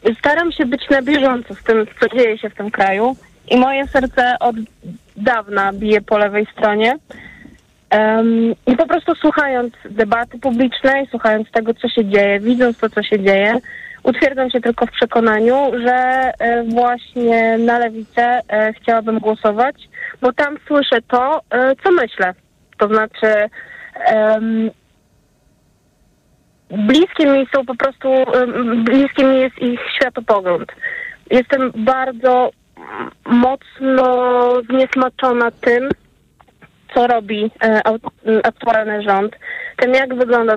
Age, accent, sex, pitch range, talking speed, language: 20-39, native, female, 220-260 Hz, 115 wpm, Polish